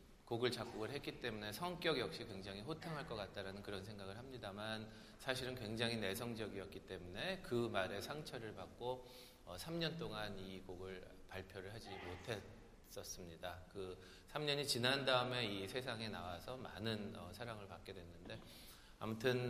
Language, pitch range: Korean, 95-125 Hz